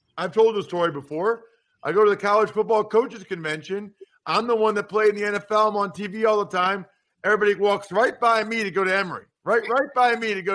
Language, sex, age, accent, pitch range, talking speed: English, male, 50-69, American, 145-195 Hz, 240 wpm